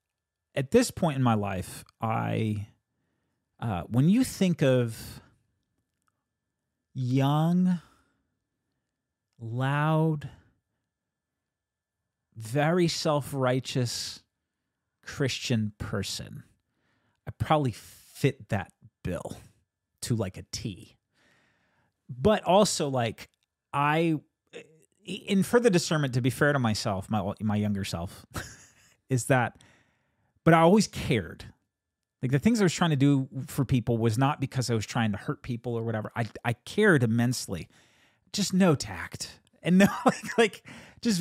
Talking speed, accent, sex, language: 120 wpm, American, male, English